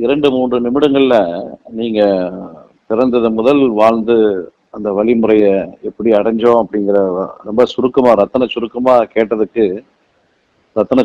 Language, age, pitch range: Tamil, 50-69, 115-140 Hz